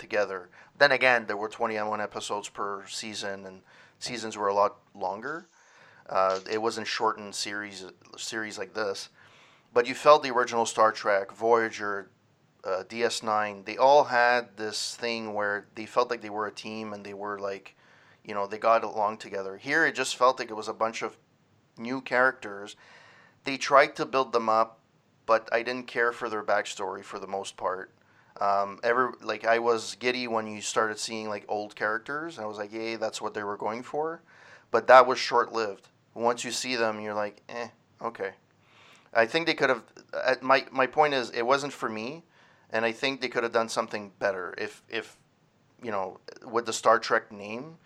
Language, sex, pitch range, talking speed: English, male, 105-125 Hz, 190 wpm